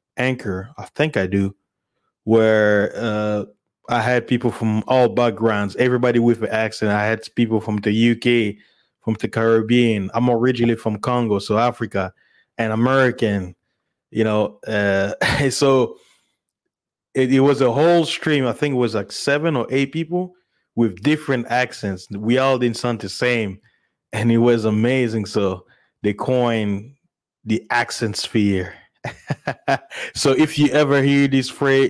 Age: 20-39